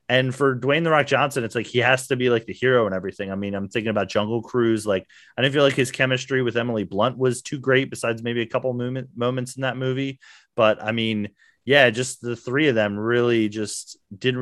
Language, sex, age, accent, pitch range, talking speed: English, male, 30-49, American, 115-140 Hz, 240 wpm